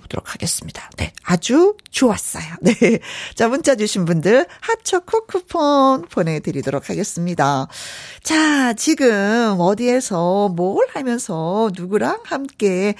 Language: Korean